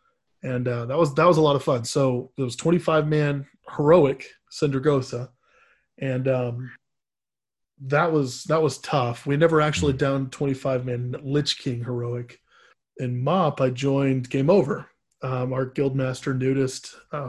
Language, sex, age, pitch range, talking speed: English, male, 20-39, 125-145 Hz, 155 wpm